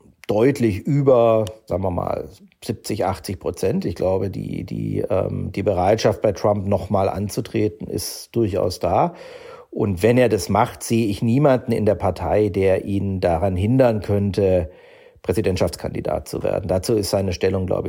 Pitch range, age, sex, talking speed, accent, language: 105-140 Hz, 50-69, male, 150 wpm, German, German